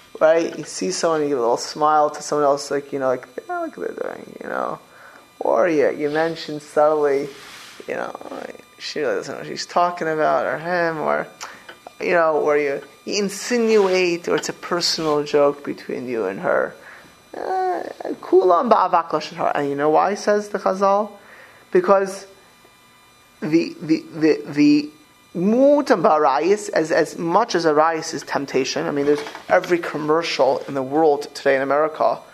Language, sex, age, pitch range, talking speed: English, male, 20-39, 150-200 Hz, 160 wpm